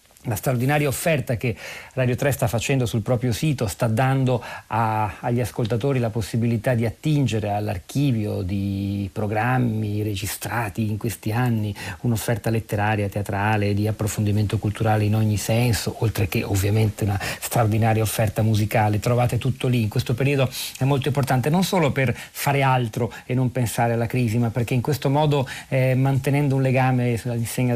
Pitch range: 110-130 Hz